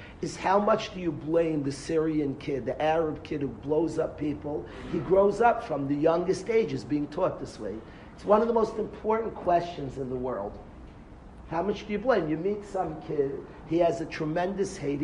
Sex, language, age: male, English, 50-69